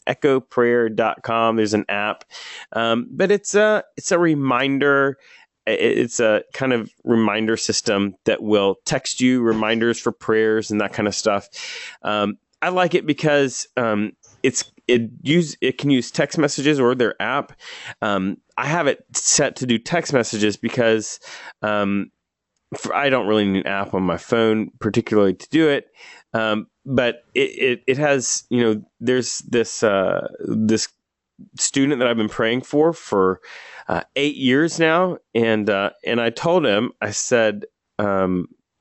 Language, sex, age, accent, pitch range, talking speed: English, male, 30-49, American, 105-145 Hz, 160 wpm